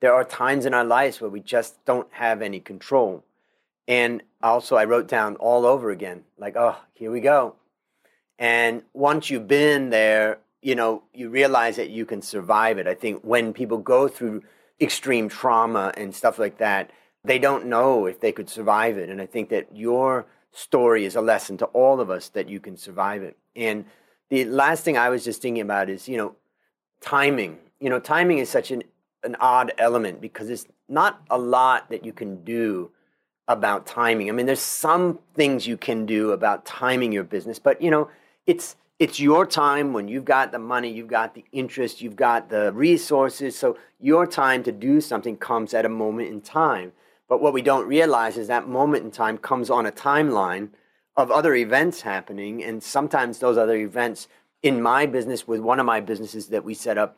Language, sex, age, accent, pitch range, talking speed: English, male, 40-59, American, 110-135 Hz, 200 wpm